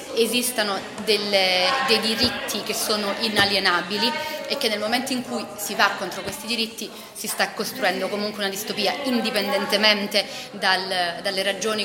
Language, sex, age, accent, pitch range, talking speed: Italian, female, 30-49, native, 190-225 Hz, 135 wpm